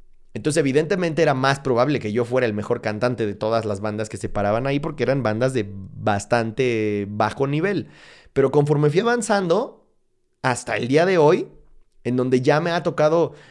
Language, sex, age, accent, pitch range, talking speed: Spanish, male, 30-49, Mexican, 115-145 Hz, 180 wpm